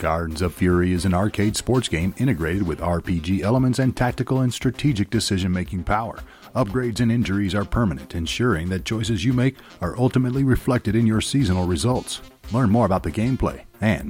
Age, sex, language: 40-59, male, English